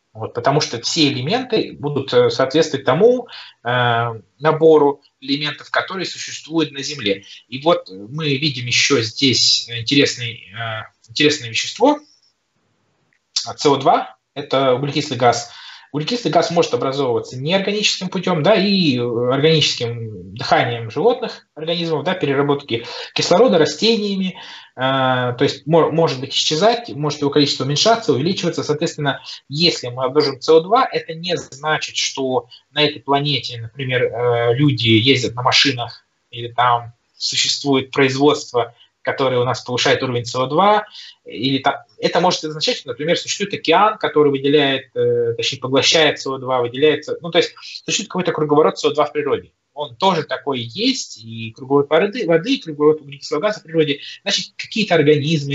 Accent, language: native, Russian